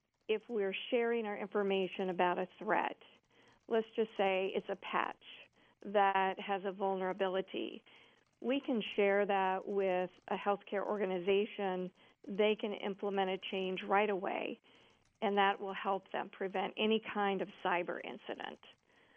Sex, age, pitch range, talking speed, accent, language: female, 50-69, 195-215 Hz, 140 wpm, American, English